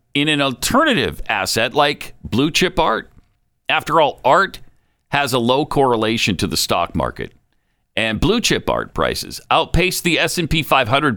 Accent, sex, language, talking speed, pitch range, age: American, male, English, 150 wpm, 105-150 Hz, 50-69